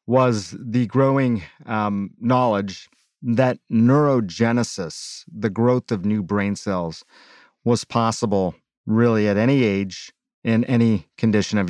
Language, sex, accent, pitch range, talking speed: English, male, American, 105-125 Hz, 120 wpm